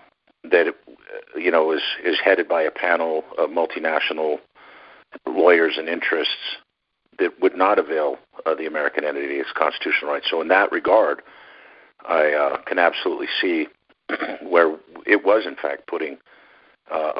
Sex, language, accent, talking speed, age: male, English, American, 145 wpm, 50-69